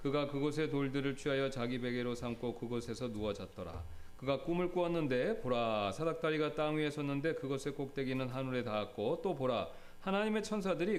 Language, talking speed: English, 140 wpm